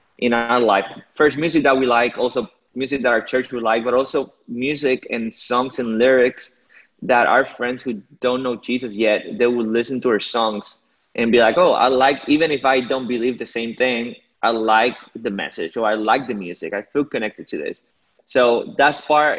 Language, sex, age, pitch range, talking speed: English, male, 20-39, 110-125 Hz, 205 wpm